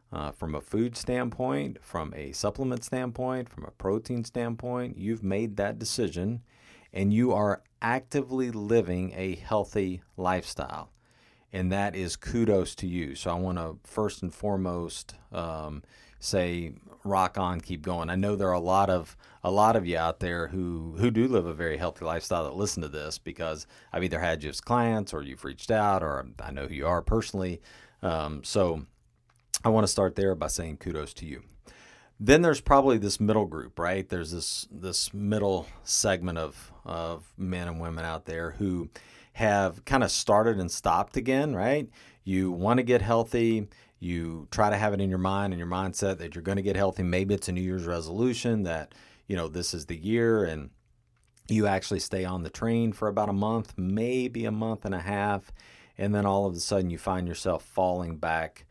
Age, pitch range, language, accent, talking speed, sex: 40-59, 85-110 Hz, English, American, 195 wpm, male